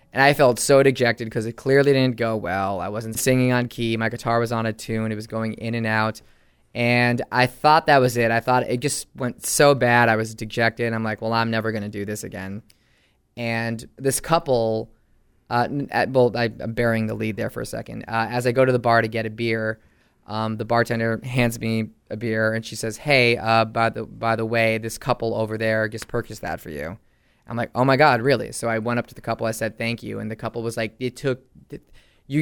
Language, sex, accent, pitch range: English, male, American, 110-120 Hz